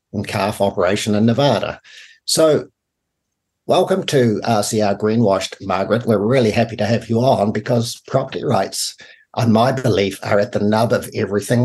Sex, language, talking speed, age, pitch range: male, English, 155 wpm, 60-79, 100-120 Hz